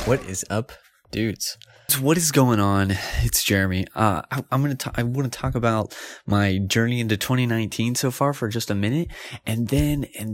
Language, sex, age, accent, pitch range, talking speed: English, male, 20-39, American, 95-130 Hz, 190 wpm